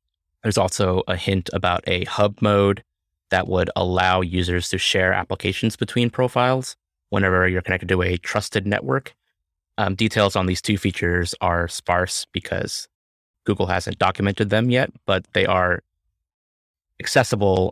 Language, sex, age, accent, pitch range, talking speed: English, male, 20-39, American, 90-100 Hz, 140 wpm